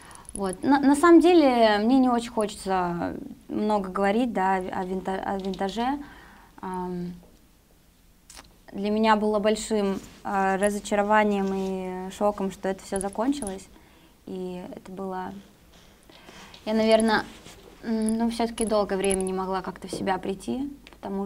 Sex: female